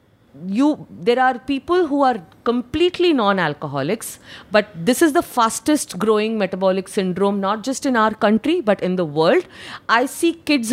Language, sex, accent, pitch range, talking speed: Hindi, female, native, 180-255 Hz, 150 wpm